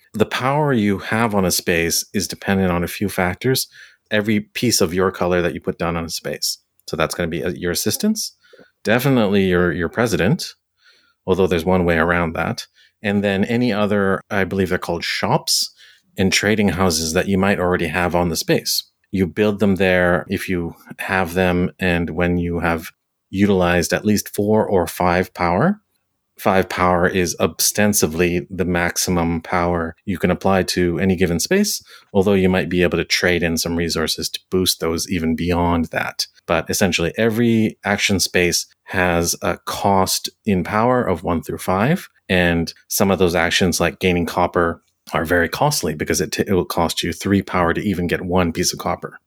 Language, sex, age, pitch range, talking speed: English, male, 30-49, 85-100 Hz, 185 wpm